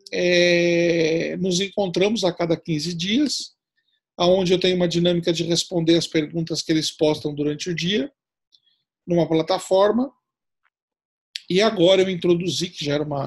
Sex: male